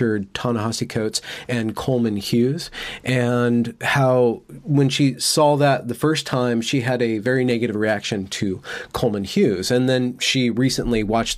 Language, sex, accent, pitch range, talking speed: English, male, American, 110-130 Hz, 150 wpm